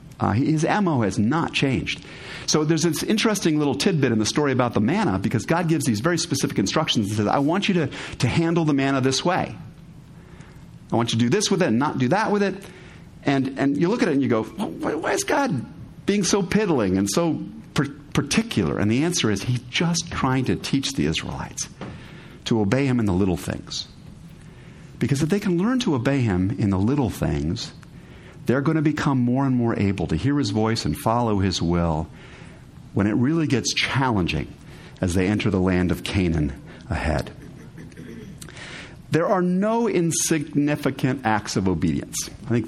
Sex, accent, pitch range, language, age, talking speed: male, American, 105-160 Hz, English, 50-69, 195 wpm